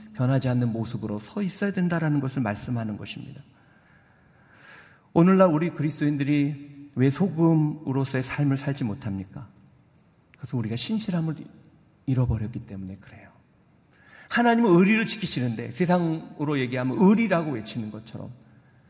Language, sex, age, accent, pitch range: Korean, male, 50-69, native, 120-165 Hz